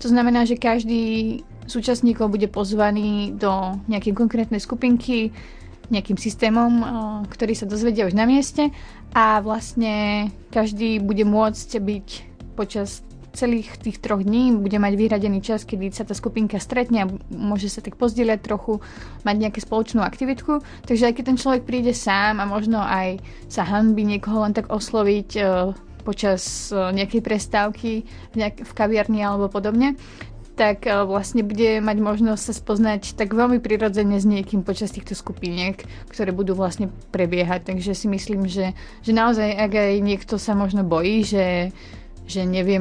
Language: Slovak